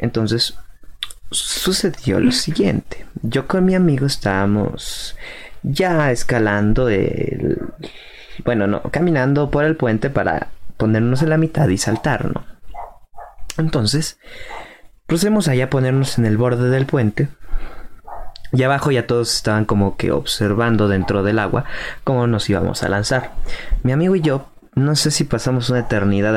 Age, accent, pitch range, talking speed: 30-49, Mexican, 105-145 Hz, 140 wpm